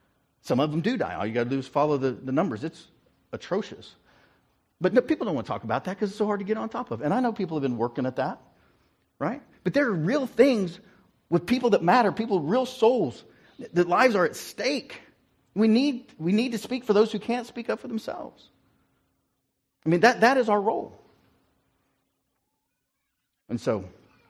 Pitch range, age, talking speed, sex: 130-205 Hz, 50-69, 210 wpm, male